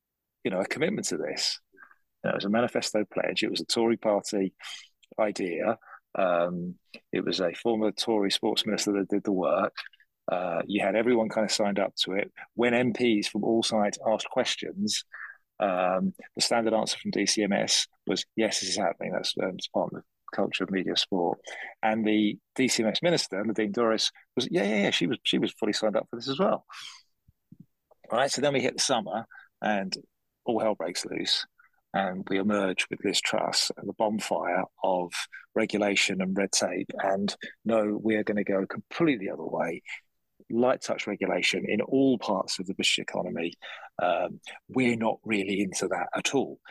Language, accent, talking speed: English, British, 180 wpm